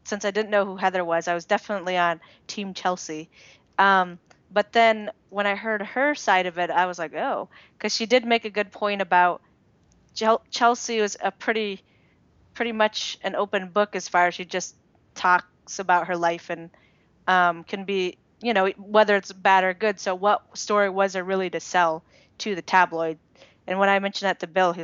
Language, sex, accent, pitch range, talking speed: English, female, American, 175-205 Hz, 200 wpm